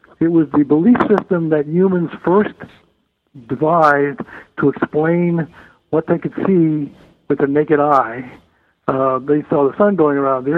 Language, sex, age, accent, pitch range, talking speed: English, male, 60-79, American, 140-170 Hz, 155 wpm